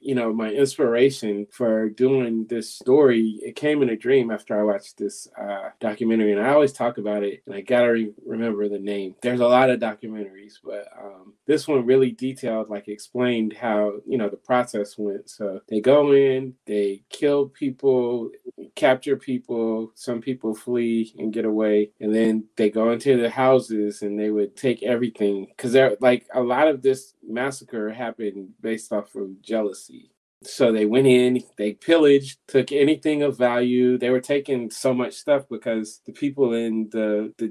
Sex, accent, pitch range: male, American, 110-130 Hz